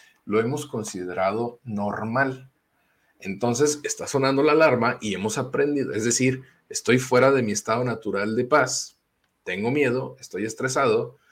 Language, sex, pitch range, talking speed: Spanish, male, 105-135 Hz, 140 wpm